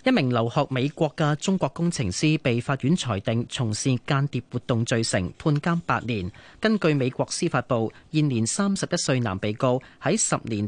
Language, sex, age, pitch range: Chinese, male, 30-49, 115-160 Hz